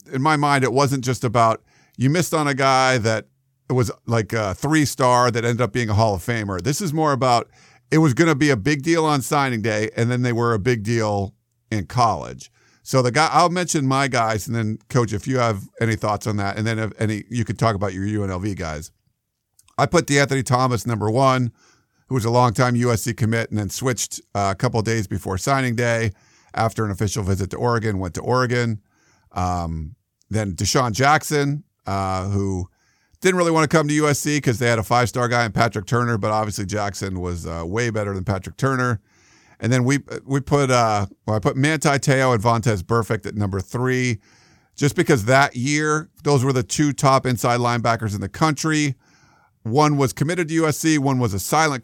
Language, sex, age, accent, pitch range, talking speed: English, male, 50-69, American, 110-140 Hz, 210 wpm